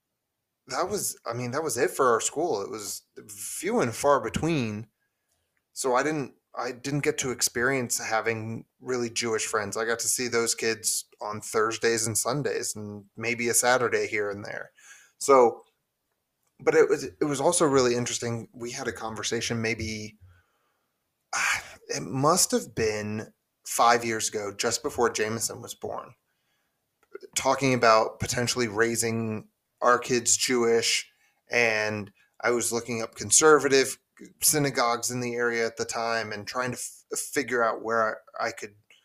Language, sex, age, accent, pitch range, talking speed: English, male, 30-49, American, 110-135 Hz, 155 wpm